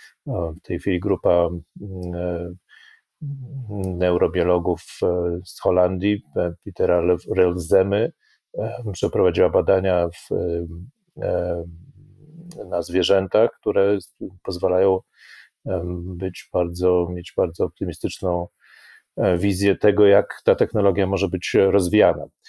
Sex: male